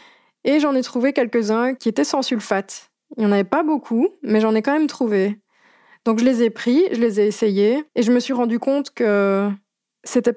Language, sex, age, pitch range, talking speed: French, female, 20-39, 205-240 Hz, 220 wpm